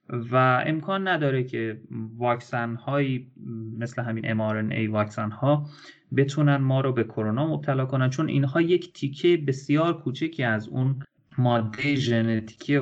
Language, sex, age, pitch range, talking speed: Persian, male, 30-49, 115-145 Hz, 130 wpm